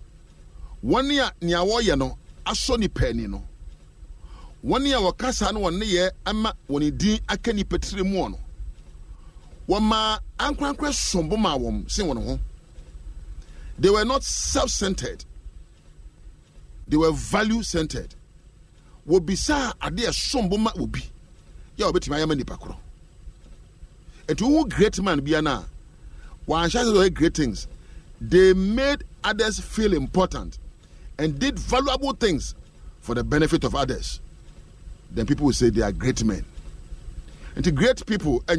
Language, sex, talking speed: English, male, 135 wpm